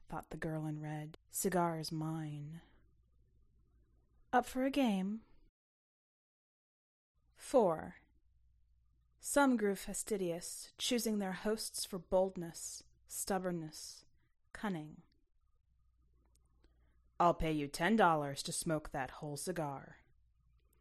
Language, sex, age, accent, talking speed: English, female, 30-49, American, 95 wpm